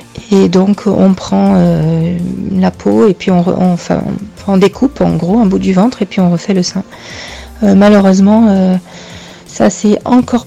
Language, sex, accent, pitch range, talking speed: French, female, French, 185-205 Hz, 190 wpm